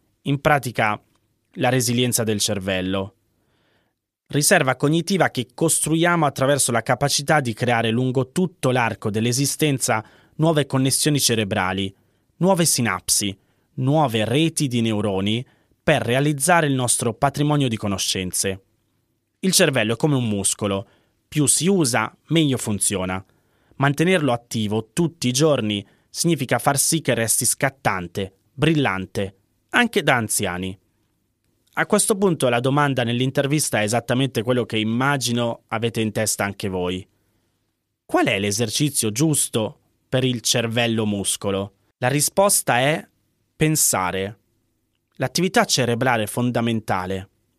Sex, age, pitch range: male, 20-39, 105-145 Hz